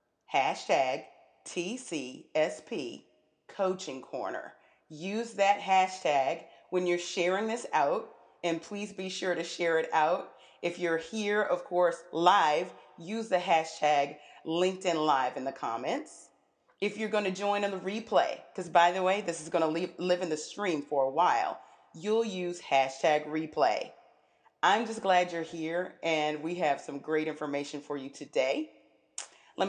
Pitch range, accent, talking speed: 165-205 Hz, American, 155 wpm